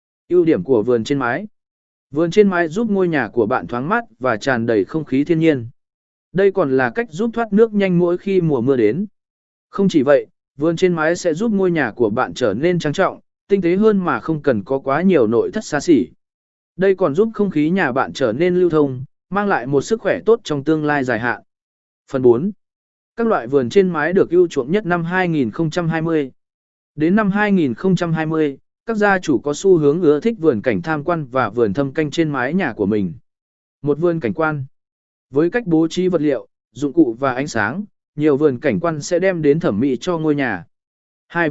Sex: male